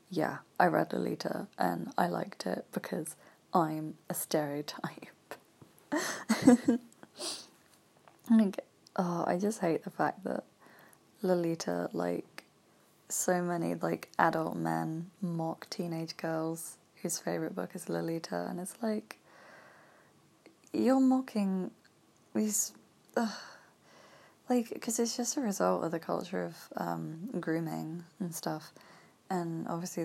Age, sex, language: 20-39, female, English